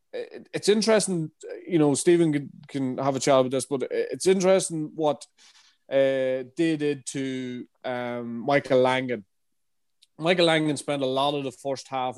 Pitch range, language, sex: 125-145 Hz, English, male